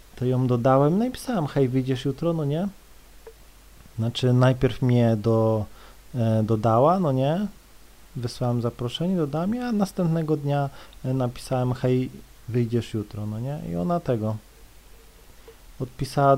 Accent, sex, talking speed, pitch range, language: native, male, 125 wpm, 125-175 Hz, Polish